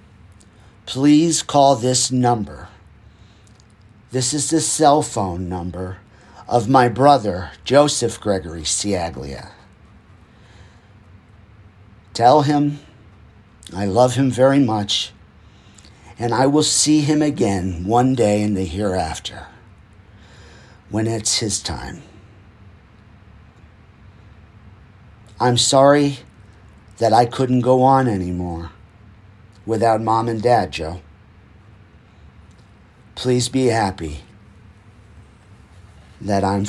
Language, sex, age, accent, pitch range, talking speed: English, male, 50-69, American, 95-125 Hz, 90 wpm